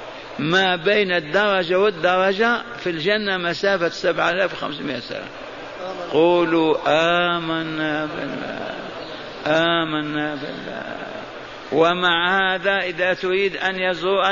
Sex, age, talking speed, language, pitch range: male, 50-69, 90 wpm, Arabic, 175-205 Hz